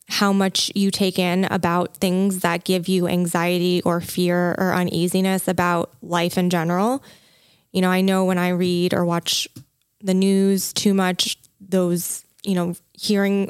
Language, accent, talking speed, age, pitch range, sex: English, American, 160 wpm, 20-39, 180-200 Hz, female